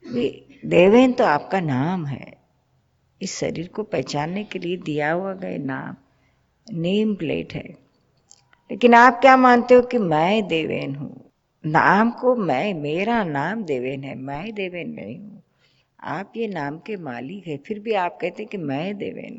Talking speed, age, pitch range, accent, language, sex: 160 wpm, 50-69, 155-225 Hz, native, Hindi, female